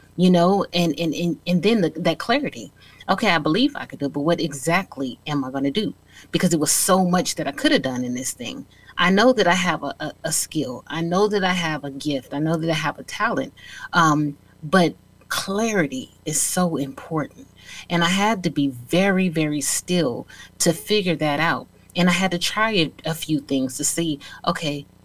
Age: 30-49